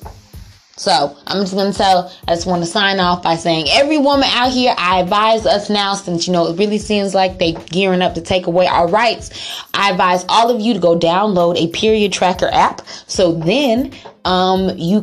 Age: 20-39